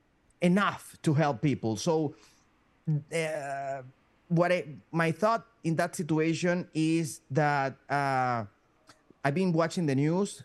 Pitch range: 140-190 Hz